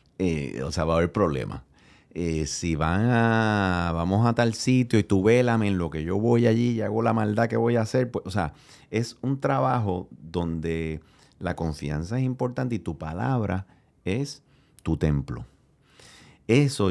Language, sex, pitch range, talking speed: Spanish, male, 80-120 Hz, 180 wpm